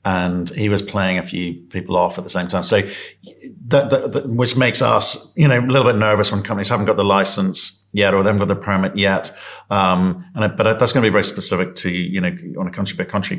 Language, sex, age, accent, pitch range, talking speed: English, male, 50-69, British, 95-140 Hz, 255 wpm